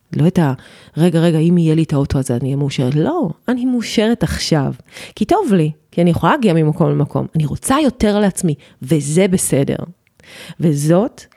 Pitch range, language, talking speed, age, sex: 145-180 Hz, Hebrew, 180 wpm, 30-49, female